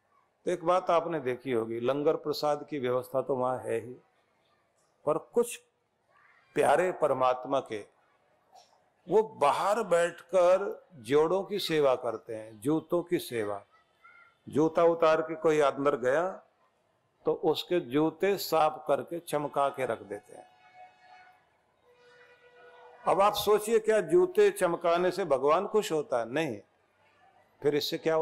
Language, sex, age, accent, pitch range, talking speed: Hindi, male, 50-69, native, 140-205 Hz, 130 wpm